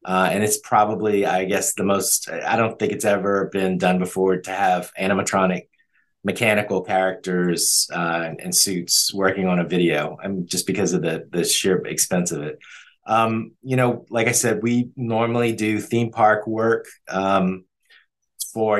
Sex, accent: male, American